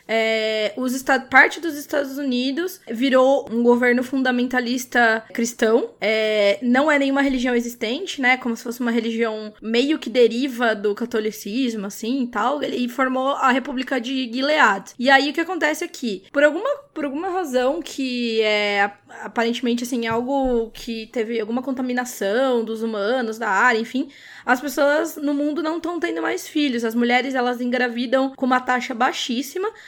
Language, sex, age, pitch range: Portuguese, female, 20-39, 230-280 Hz